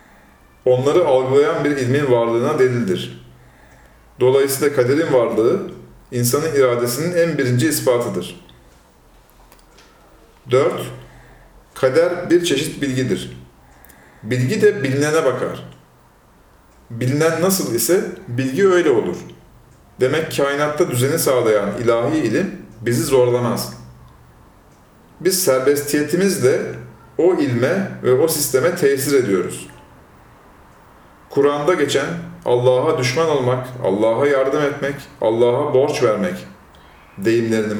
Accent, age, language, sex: native, 40-59, Turkish, male